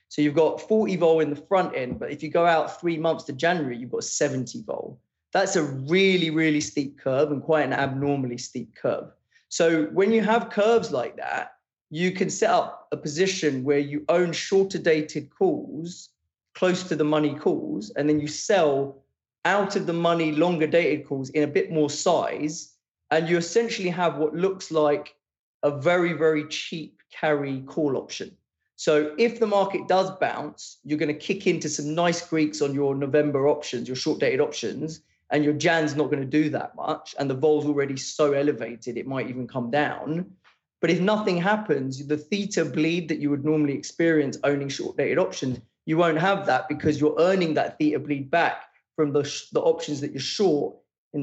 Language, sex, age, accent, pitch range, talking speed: English, male, 20-39, British, 145-170 Hz, 190 wpm